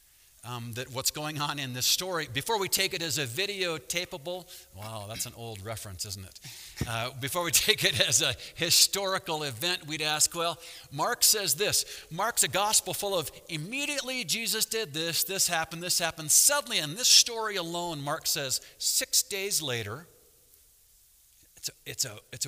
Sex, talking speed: male, 165 wpm